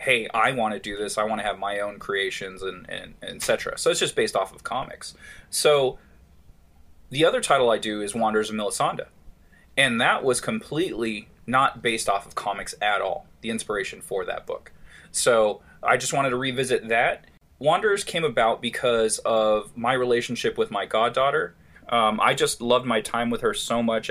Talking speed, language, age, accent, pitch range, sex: 190 wpm, English, 20-39, American, 110-135 Hz, male